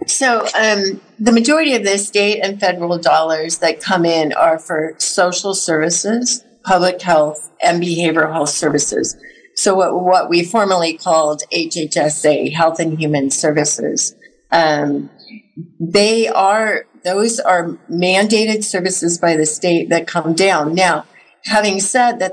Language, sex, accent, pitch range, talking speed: English, female, American, 160-195 Hz, 135 wpm